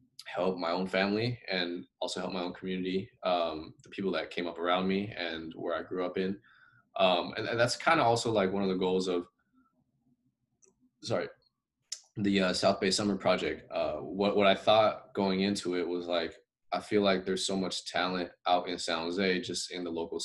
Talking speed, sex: 205 wpm, male